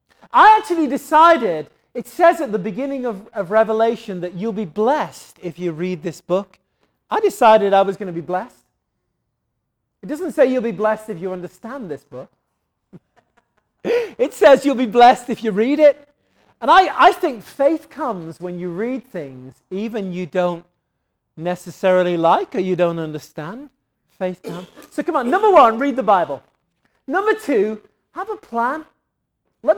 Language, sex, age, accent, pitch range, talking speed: English, male, 40-59, British, 180-275 Hz, 165 wpm